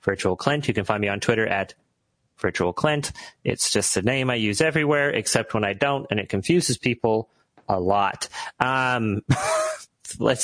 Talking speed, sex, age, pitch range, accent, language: 170 wpm, male, 30-49, 105-135 Hz, American, English